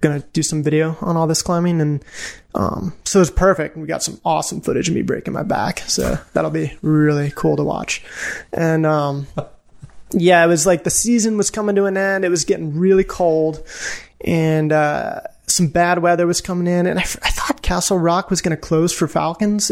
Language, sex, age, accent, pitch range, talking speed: English, male, 20-39, American, 150-180 Hz, 205 wpm